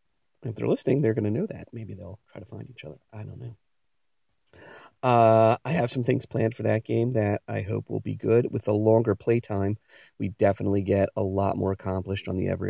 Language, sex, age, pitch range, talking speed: English, male, 40-59, 95-115 Hz, 225 wpm